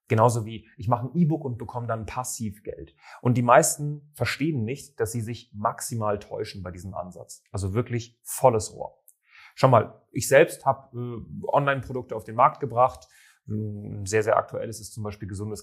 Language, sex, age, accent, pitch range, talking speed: German, male, 30-49, German, 105-130 Hz, 175 wpm